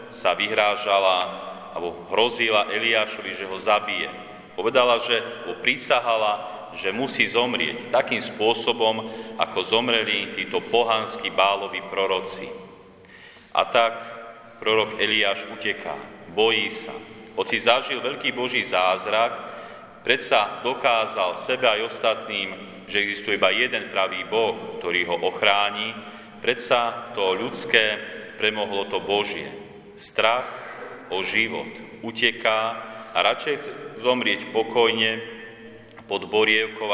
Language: Slovak